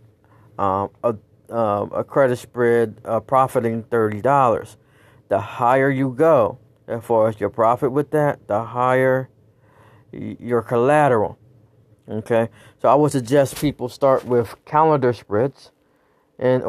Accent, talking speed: American, 120 wpm